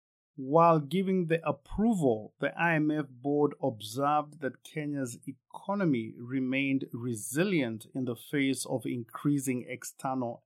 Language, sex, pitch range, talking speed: English, male, 130-165 Hz, 110 wpm